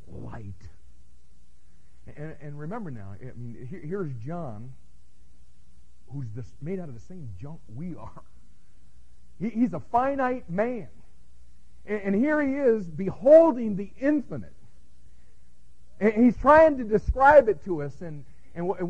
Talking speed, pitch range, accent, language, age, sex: 125 wpm, 120-190 Hz, American, English, 50-69, male